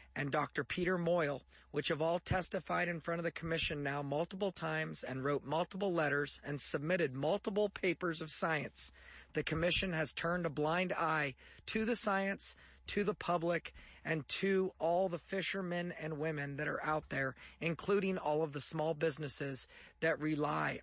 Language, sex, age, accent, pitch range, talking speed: English, male, 40-59, American, 145-180 Hz, 165 wpm